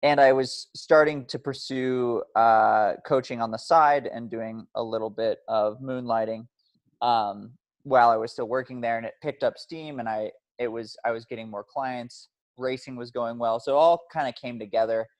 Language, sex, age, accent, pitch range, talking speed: English, male, 20-39, American, 110-130 Hz, 195 wpm